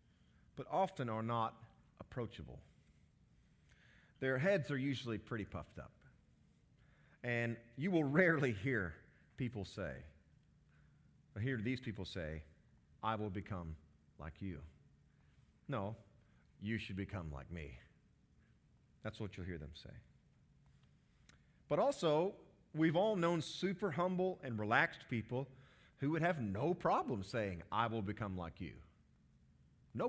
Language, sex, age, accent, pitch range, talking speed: English, male, 40-59, American, 95-140 Hz, 125 wpm